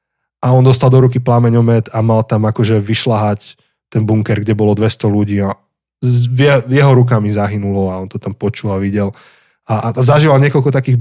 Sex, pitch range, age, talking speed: male, 110-135 Hz, 20-39, 185 wpm